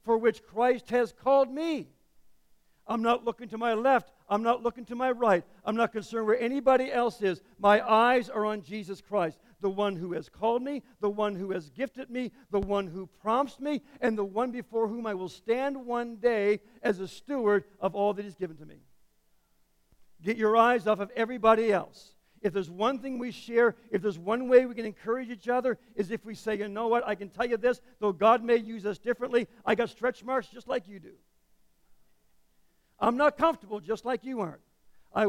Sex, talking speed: male, 210 wpm